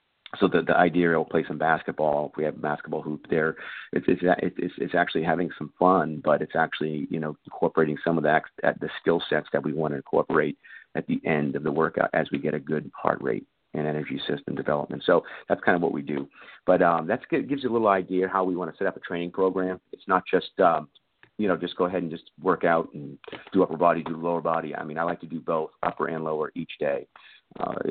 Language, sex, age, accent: English, male, 40-59, American